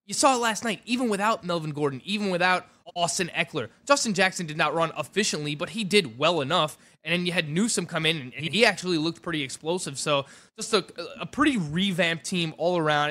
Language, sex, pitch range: English, male, 155-210 Hz